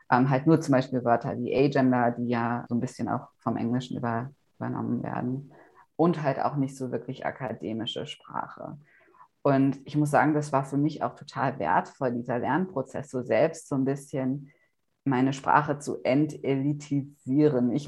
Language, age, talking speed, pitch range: German, 20-39, 160 wpm, 130-150 Hz